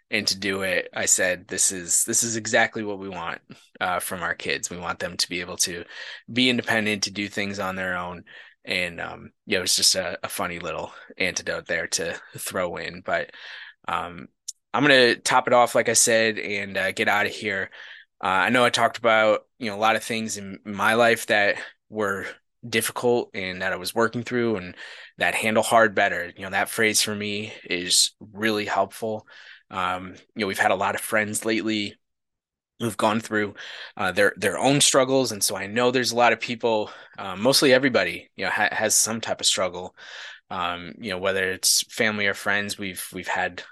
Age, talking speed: 20-39, 210 wpm